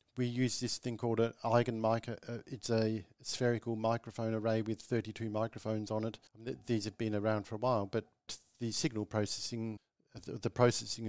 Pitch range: 105-115 Hz